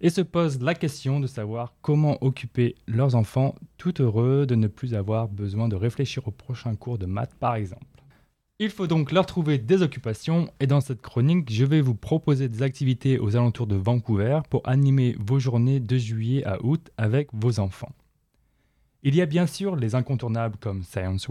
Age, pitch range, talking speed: 20-39, 110-140 Hz, 190 wpm